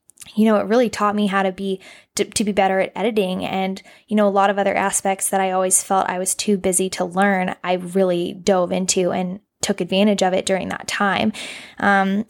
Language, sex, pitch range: English, female, 190-215 Hz